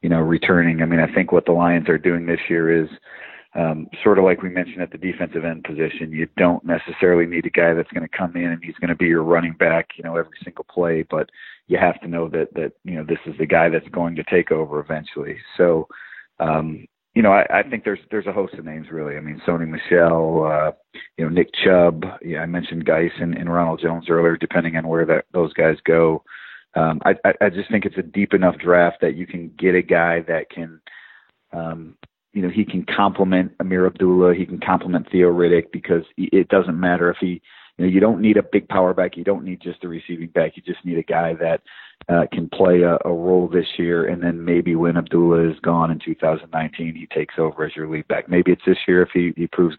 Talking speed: 240 wpm